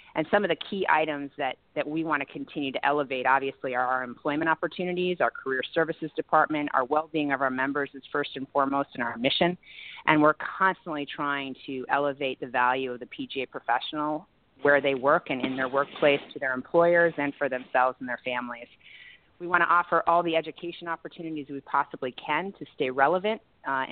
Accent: American